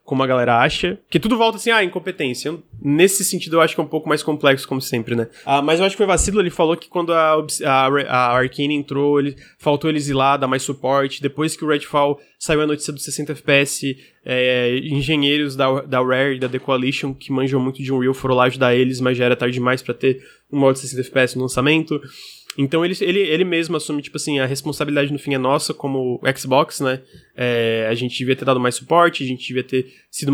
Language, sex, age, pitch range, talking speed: Portuguese, male, 20-39, 130-155 Hz, 240 wpm